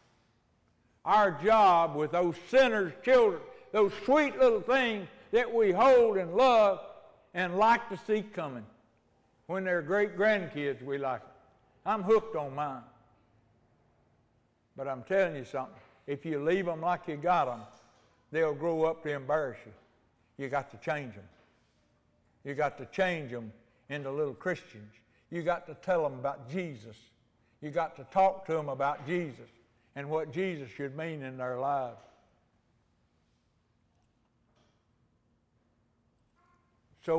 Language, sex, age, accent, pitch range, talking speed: English, male, 60-79, American, 135-210 Hz, 140 wpm